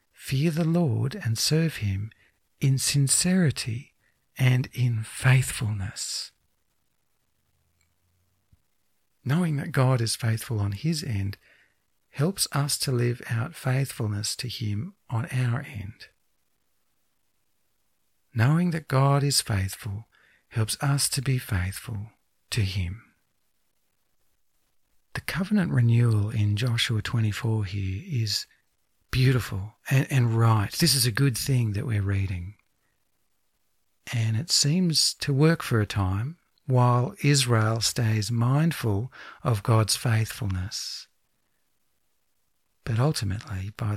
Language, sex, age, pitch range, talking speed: English, male, 60-79, 105-130 Hz, 110 wpm